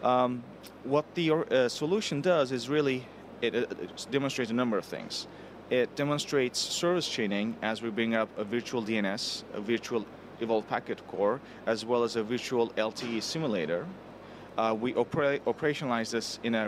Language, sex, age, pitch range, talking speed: English, male, 30-49, 110-125 Hz, 160 wpm